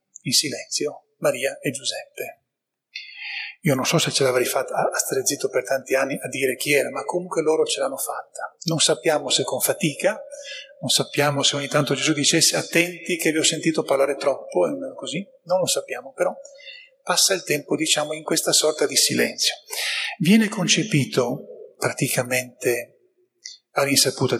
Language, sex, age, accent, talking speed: Italian, male, 30-49, native, 165 wpm